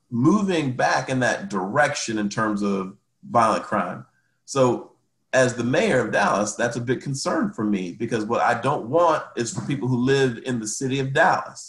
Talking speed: 190 wpm